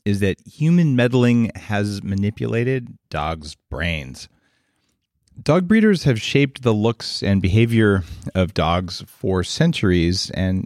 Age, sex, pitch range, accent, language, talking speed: 40-59, male, 95-125 Hz, American, English, 120 wpm